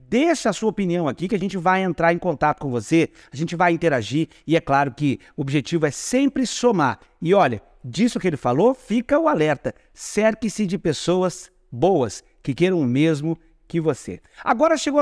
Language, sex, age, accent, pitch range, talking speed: Portuguese, male, 50-69, Brazilian, 160-230 Hz, 190 wpm